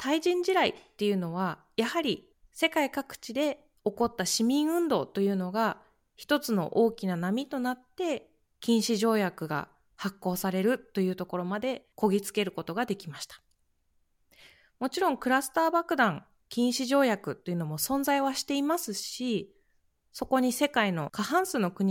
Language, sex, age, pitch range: Japanese, female, 20-39, 180-270 Hz